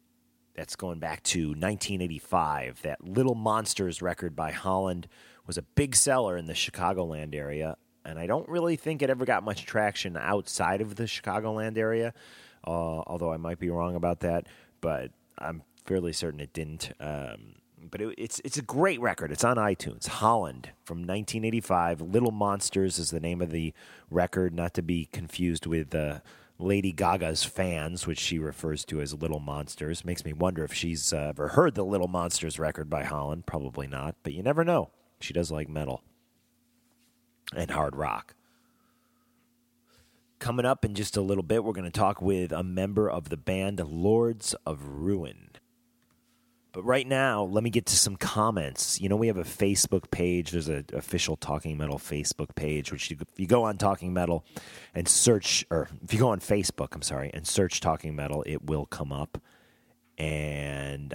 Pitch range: 80-105 Hz